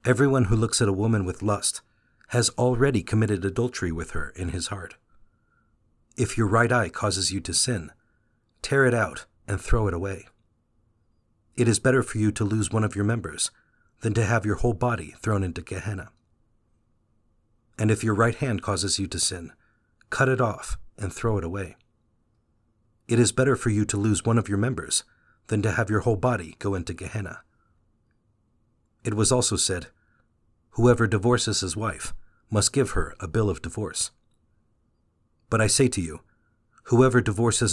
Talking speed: 175 wpm